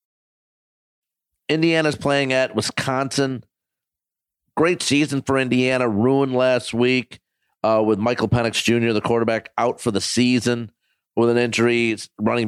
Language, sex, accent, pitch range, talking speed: English, male, American, 110-130 Hz, 125 wpm